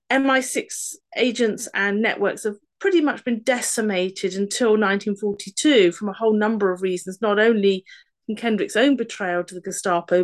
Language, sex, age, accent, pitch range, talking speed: English, female, 40-59, British, 205-295 Hz, 150 wpm